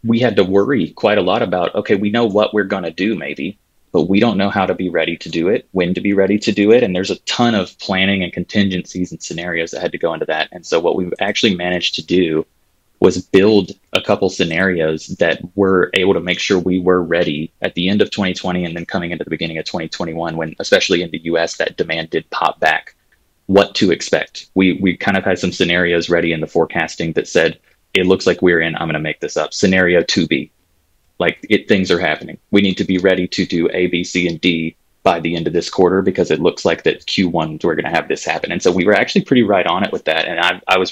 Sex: male